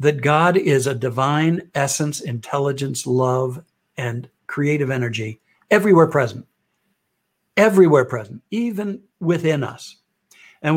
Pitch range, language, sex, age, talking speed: 130-165 Hz, English, male, 60-79, 105 wpm